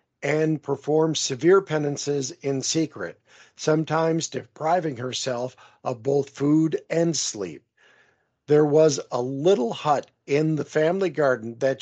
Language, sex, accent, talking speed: English, male, American, 120 wpm